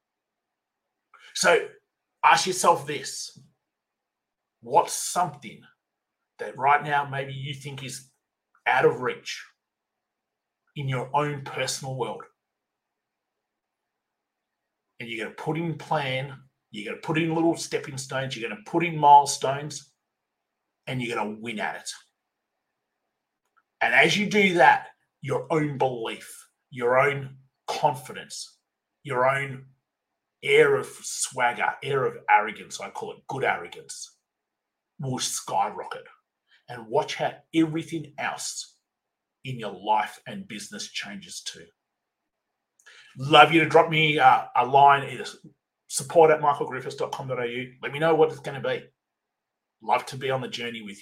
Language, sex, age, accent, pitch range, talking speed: English, male, 30-49, Australian, 135-165 Hz, 135 wpm